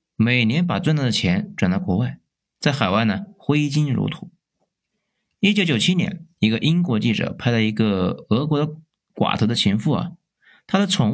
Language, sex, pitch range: Chinese, male, 125-180 Hz